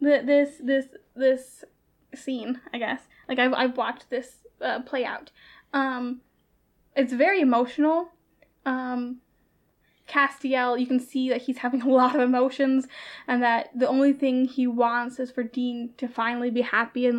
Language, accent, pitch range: English, American, 255-315 Hz